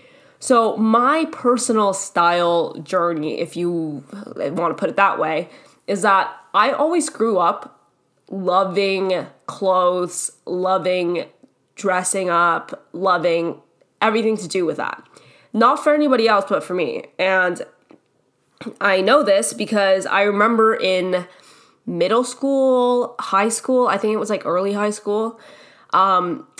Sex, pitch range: female, 185-245 Hz